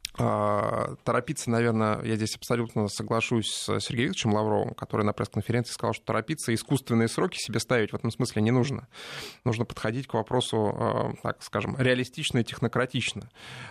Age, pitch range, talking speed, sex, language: 20-39, 110-130 Hz, 150 wpm, male, Russian